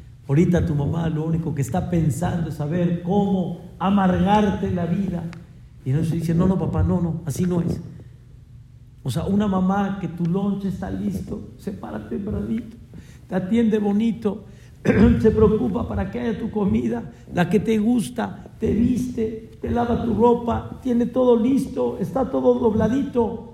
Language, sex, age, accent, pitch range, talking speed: Spanish, male, 50-69, Mexican, 120-185 Hz, 160 wpm